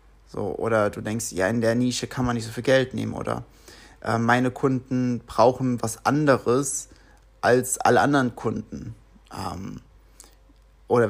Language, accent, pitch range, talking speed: German, German, 120-140 Hz, 150 wpm